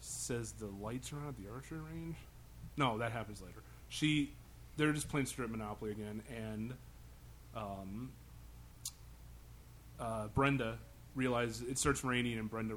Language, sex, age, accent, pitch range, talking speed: English, male, 30-49, American, 105-125 Hz, 135 wpm